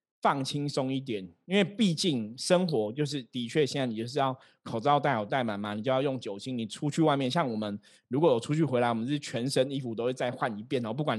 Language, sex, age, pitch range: Chinese, male, 20-39, 115-150 Hz